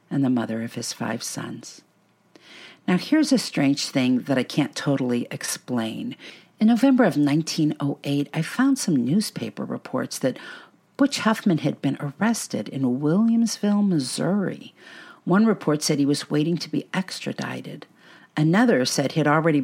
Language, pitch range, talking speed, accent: English, 135-205 Hz, 150 wpm, American